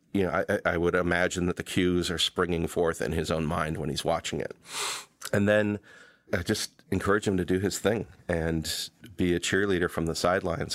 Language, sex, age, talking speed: English, male, 40-59, 205 wpm